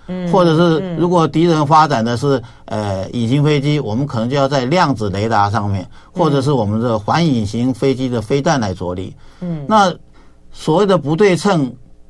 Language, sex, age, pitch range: Chinese, male, 50-69, 115-165 Hz